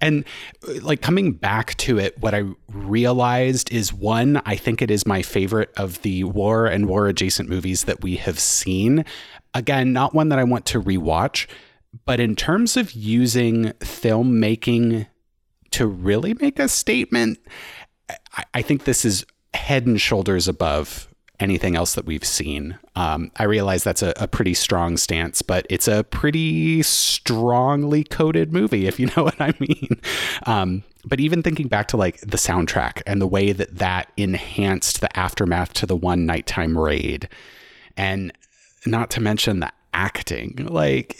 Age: 30-49